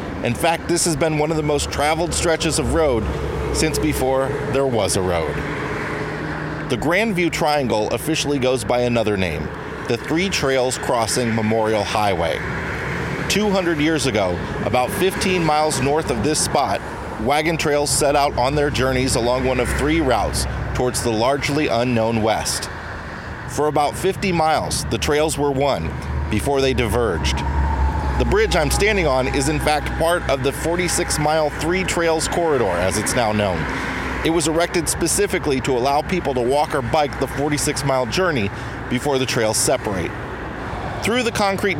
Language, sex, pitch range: English, male, 115-155 Hz